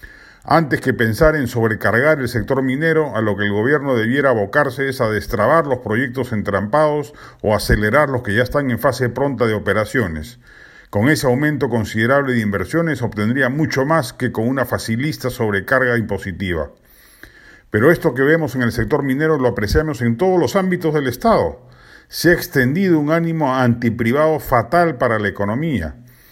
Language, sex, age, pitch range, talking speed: Spanish, male, 40-59, 115-155 Hz, 165 wpm